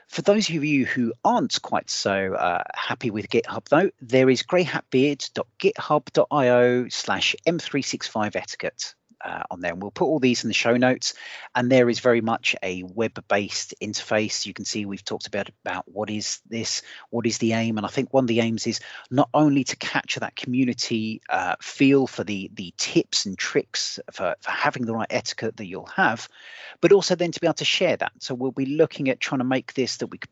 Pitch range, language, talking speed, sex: 110-130 Hz, English, 205 wpm, male